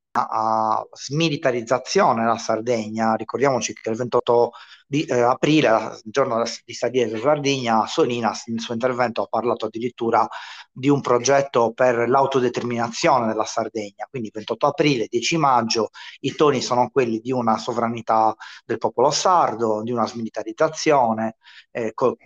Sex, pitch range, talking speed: male, 110-135 Hz, 130 wpm